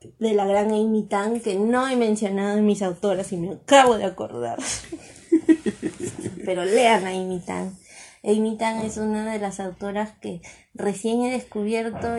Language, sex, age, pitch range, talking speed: Spanish, female, 20-39, 185-220 Hz, 165 wpm